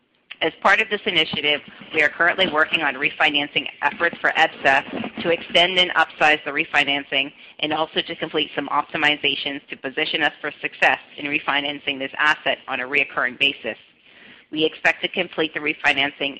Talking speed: 165 wpm